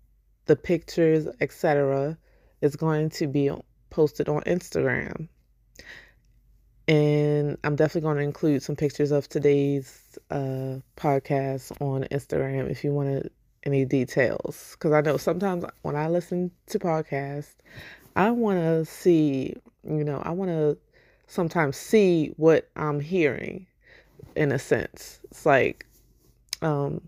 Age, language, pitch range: 20-39, English, 145-175 Hz